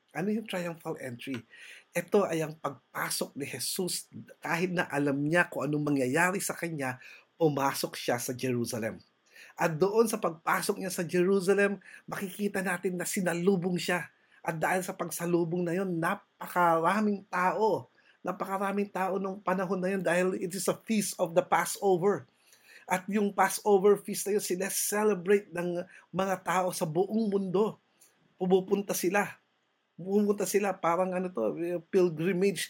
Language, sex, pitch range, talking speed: English, male, 170-200 Hz, 145 wpm